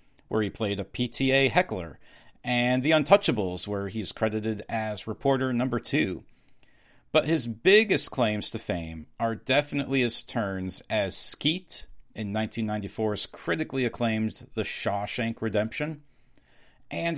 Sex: male